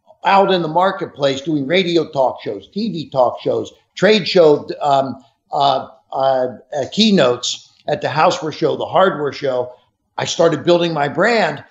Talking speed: 150 wpm